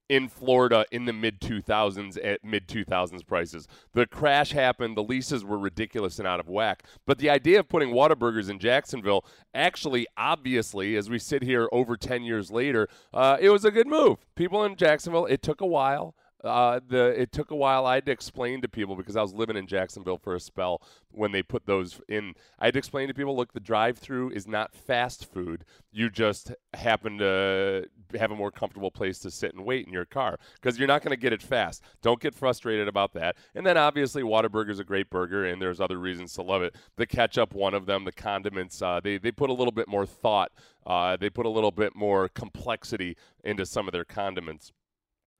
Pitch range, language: 95-130 Hz, English